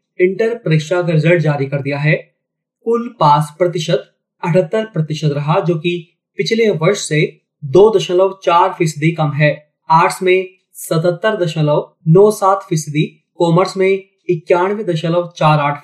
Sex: male